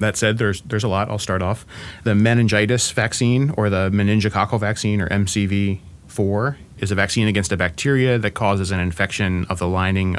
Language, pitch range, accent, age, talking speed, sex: English, 90-110 Hz, American, 30-49, 185 wpm, male